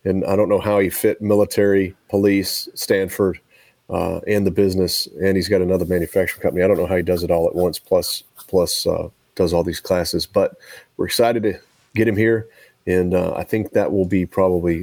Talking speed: 210 wpm